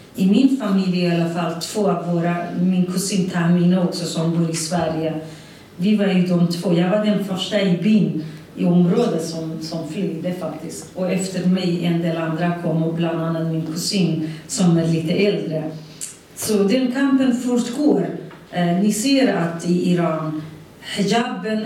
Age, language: 40-59, Swedish